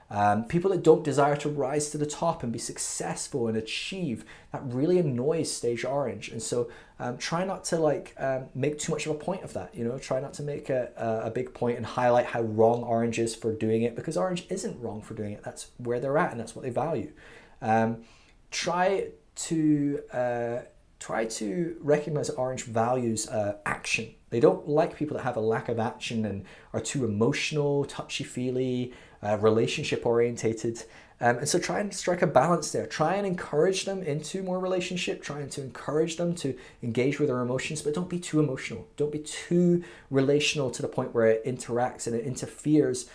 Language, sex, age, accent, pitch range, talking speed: English, male, 20-39, British, 115-155 Hz, 200 wpm